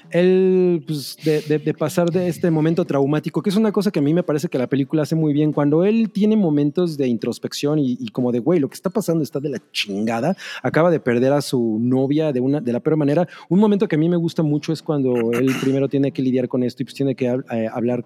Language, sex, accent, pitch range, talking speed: Spanish, male, Mexican, 125-165 Hz, 265 wpm